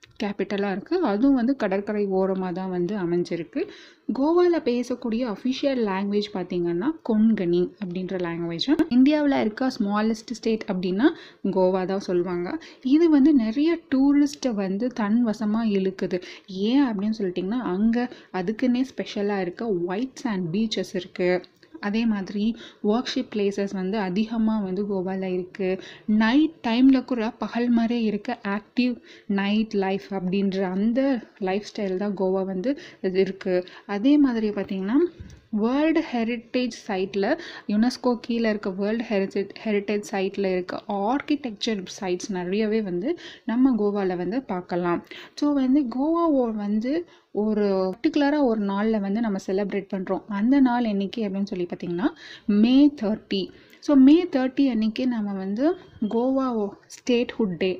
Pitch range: 190-255 Hz